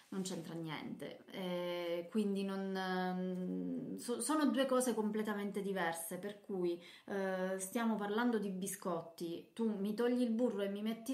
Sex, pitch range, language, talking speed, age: female, 180-220 Hz, Italian, 145 wpm, 20-39